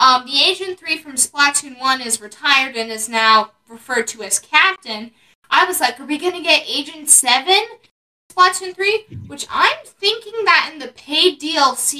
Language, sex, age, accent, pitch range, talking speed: English, female, 10-29, American, 225-325 Hz, 175 wpm